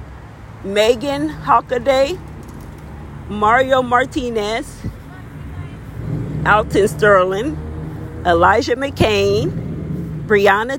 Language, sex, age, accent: English, female, 40-59, American